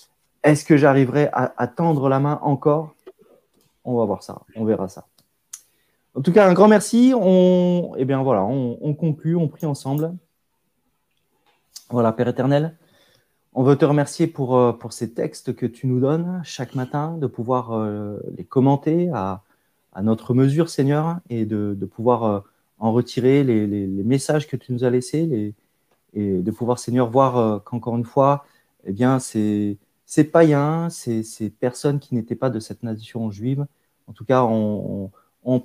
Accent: French